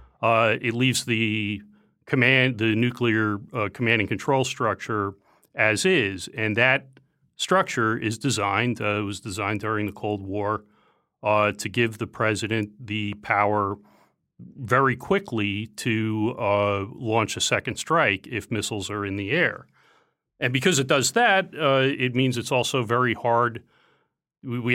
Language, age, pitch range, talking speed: English, 40-59, 105-125 Hz, 150 wpm